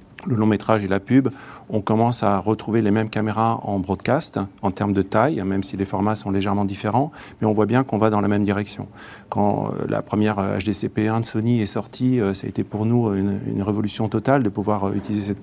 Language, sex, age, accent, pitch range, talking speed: French, male, 40-59, French, 100-120 Hz, 220 wpm